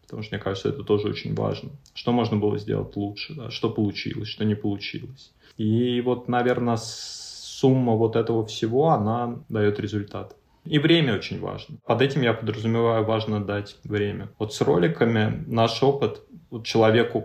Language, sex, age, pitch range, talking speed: Russian, male, 20-39, 105-120 Hz, 155 wpm